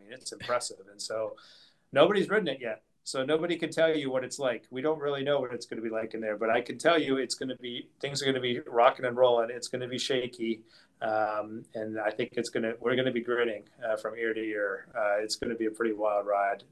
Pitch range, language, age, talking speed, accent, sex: 110-130 Hz, English, 30-49, 275 wpm, American, male